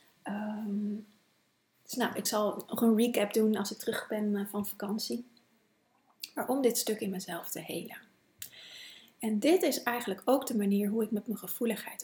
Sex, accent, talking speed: female, Dutch, 165 wpm